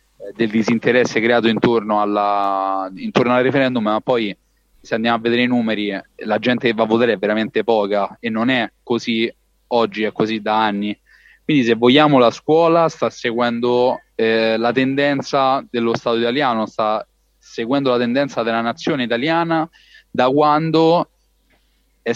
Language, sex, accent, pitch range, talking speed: Italian, male, native, 110-130 Hz, 150 wpm